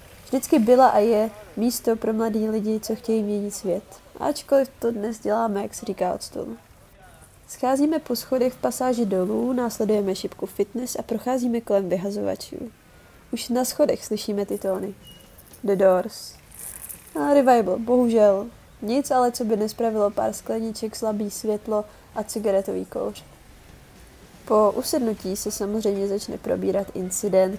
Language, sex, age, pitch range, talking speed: Czech, female, 20-39, 200-245 Hz, 140 wpm